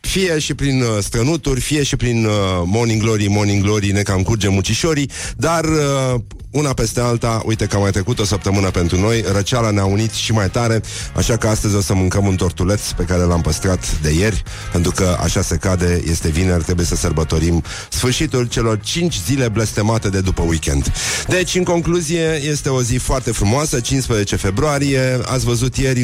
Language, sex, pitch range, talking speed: Romanian, male, 95-125 Hz, 190 wpm